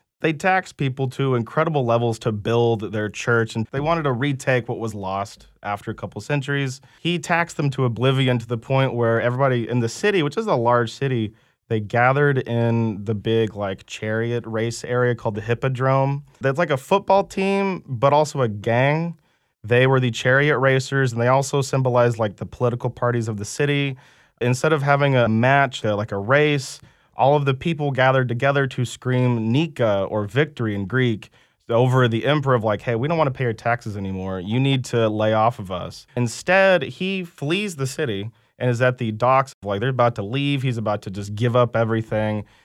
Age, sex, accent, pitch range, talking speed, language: 20-39, male, American, 115-140 Hz, 200 wpm, English